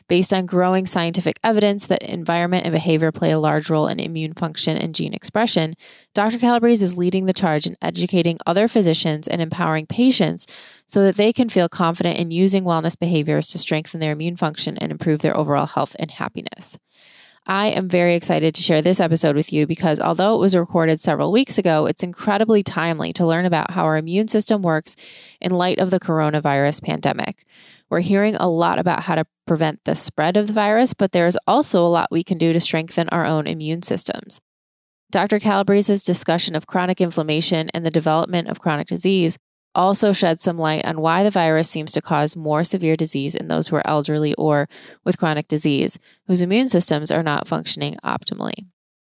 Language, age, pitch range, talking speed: English, 20-39, 160-190 Hz, 195 wpm